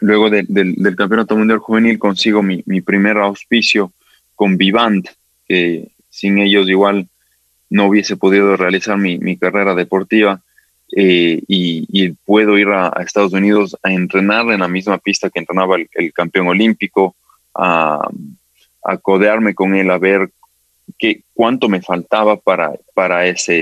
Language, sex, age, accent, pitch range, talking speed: Spanish, male, 20-39, Mexican, 90-100 Hz, 160 wpm